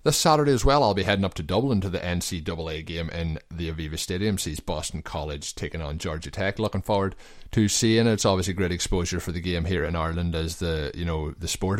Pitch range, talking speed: 80-95 Hz, 235 wpm